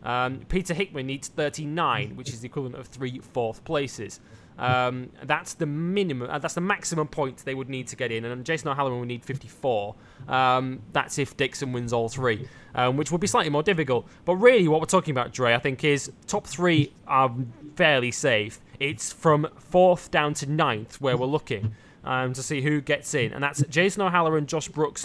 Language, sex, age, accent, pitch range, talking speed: English, male, 20-39, British, 125-165 Hz, 200 wpm